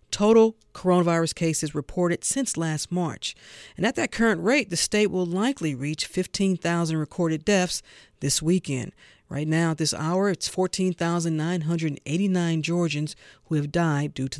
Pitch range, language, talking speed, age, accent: 155-215 Hz, English, 145 wpm, 50-69, American